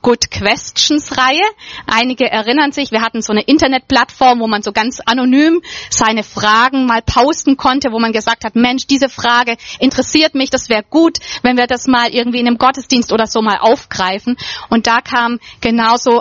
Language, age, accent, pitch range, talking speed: German, 30-49, German, 225-270 Hz, 180 wpm